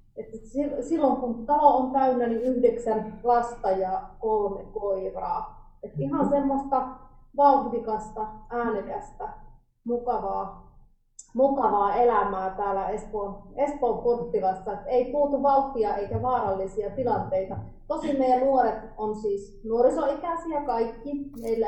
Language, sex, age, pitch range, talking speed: Finnish, female, 30-49, 200-255 Hz, 105 wpm